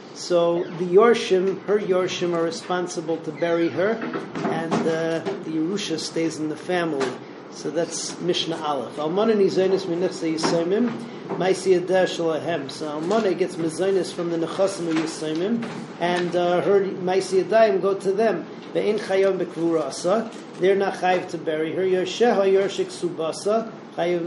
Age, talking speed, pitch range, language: 40-59, 145 wpm, 170-200 Hz, English